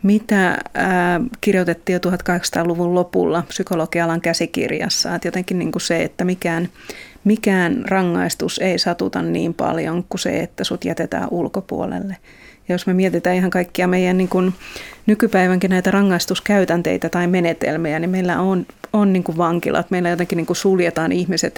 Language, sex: Finnish, female